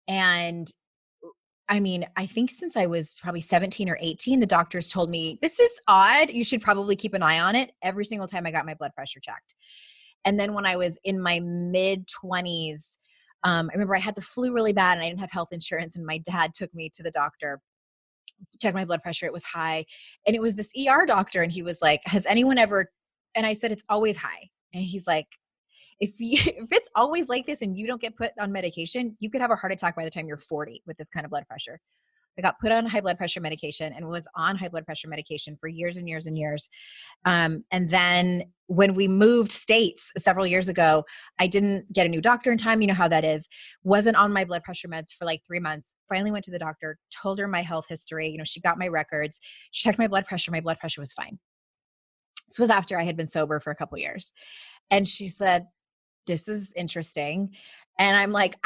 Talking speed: 235 wpm